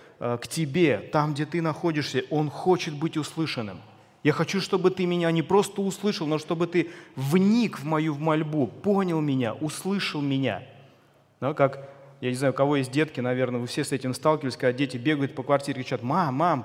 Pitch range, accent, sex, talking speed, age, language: 135-175 Hz, native, male, 185 wpm, 30-49, Russian